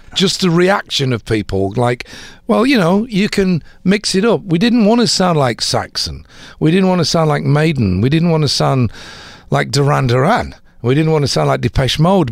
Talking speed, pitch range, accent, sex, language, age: 215 wpm, 120-170 Hz, British, male, English, 50-69